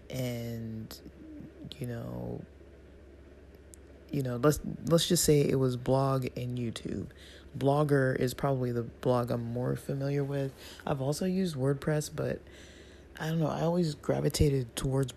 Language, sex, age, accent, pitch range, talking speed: English, male, 20-39, American, 115-150 Hz, 140 wpm